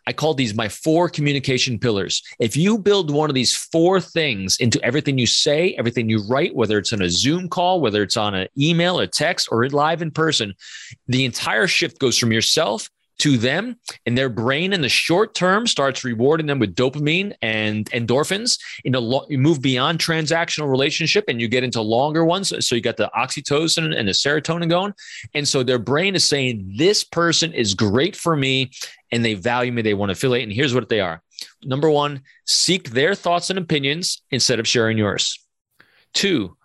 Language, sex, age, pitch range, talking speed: English, male, 30-49, 120-165 Hz, 195 wpm